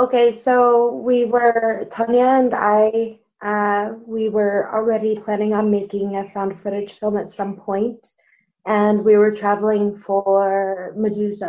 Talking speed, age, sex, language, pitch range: 140 wpm, 20-39, female, English, 195-215 Hz